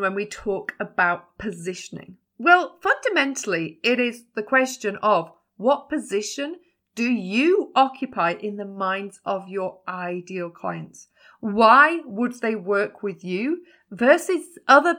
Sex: female